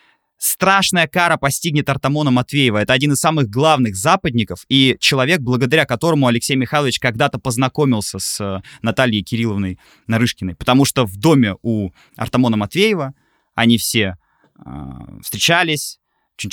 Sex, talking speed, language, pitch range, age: male, 125 wpm, Russian, 120-175 Hz, 20-39